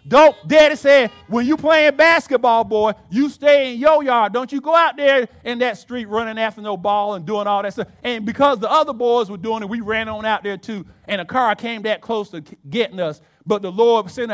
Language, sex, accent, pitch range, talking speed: English, male, American, 205-290 Hz, 240 wpm